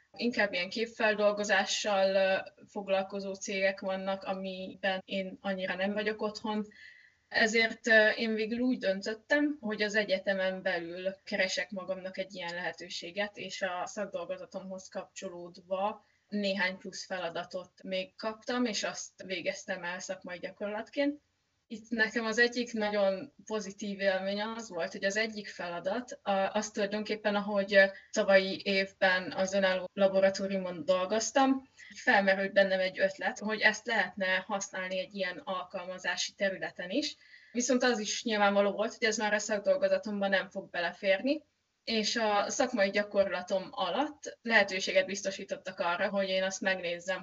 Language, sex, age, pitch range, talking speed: Hungarian, female, 20-39, 190-220 Hz, 130 wpm